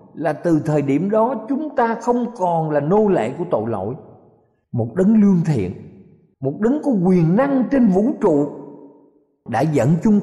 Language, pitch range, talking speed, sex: Vietnamese, 130-205 Hz, 175 wpm, male